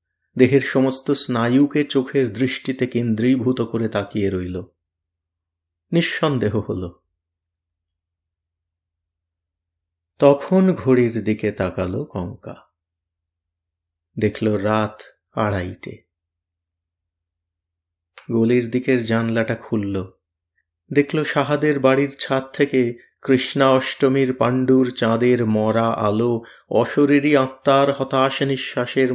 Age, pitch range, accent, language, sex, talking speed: 30-49, 85-130 Hz, native, Bengali, male, 70 wpm